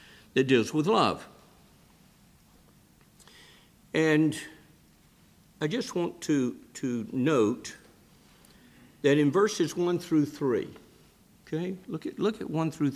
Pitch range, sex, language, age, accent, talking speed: 130-170 Hz, male, English, 60-79, American, 105 wpm